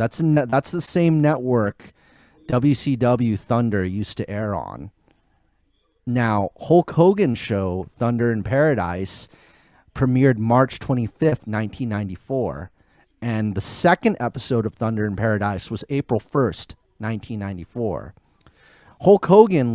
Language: English